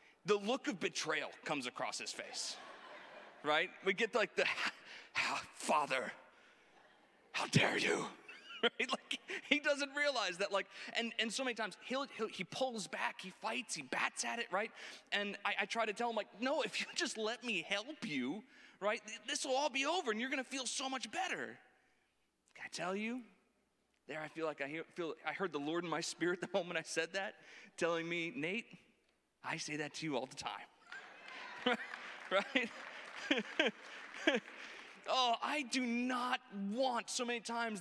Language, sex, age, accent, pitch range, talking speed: English, male, 30-49, American, 195-255 Hz, 180 wpm